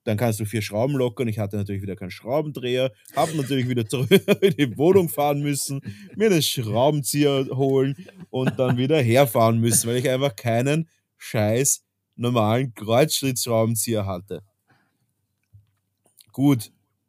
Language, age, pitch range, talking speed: German, 20-39, 105-140 Hz, 135 wpm